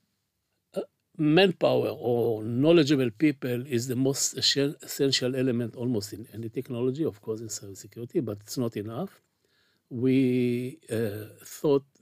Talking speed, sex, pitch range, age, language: 125 wpm, male, 110-130 Hz, 60-79, Hebrew